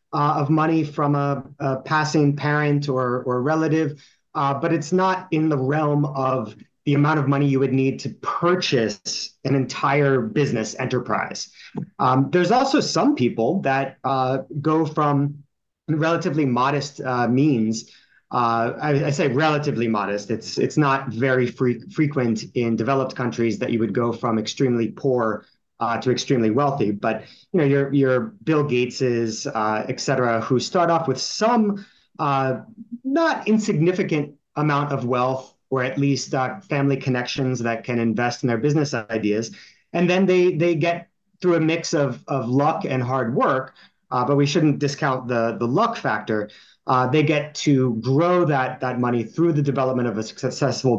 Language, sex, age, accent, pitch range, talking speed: English, male, 30-49, American, 125-155 Hz, 165 wpm